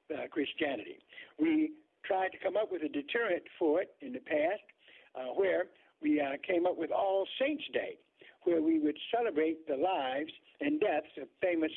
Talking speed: 180 wpm